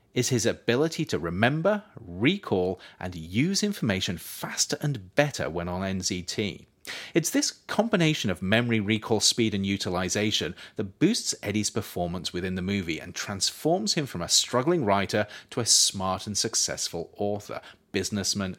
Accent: British